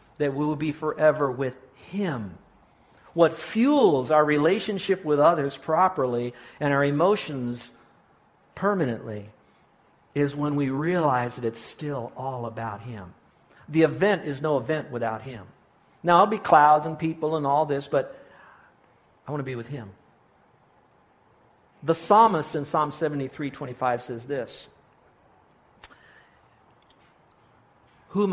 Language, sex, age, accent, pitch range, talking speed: English, male, 60-79, American, 115-150 Hz, 125 wpm